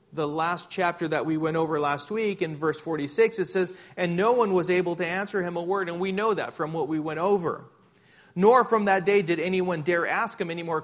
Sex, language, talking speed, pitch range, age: male, English, 245 wpm, 160-210 Hz, 40-59